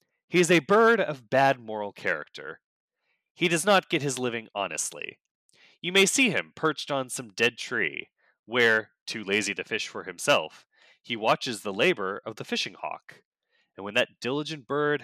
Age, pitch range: 20-39, 105-160 Hz